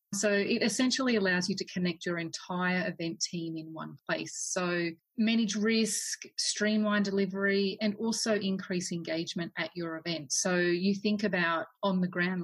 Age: 30-49